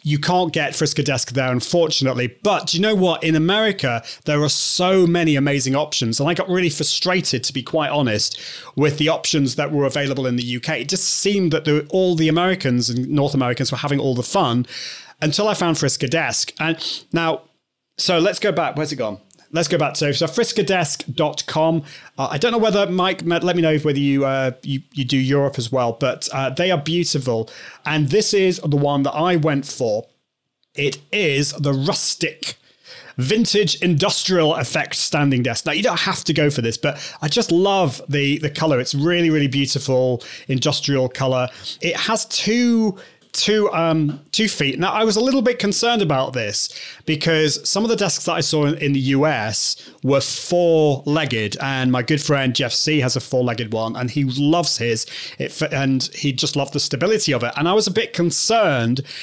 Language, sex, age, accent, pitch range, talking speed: English, male, 30-49, British, 135-175 Hz, 195 wpm